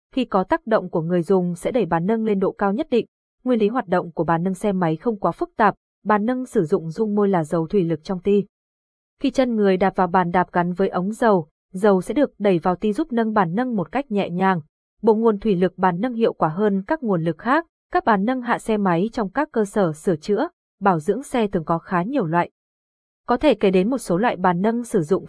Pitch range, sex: 180-230 Hz, female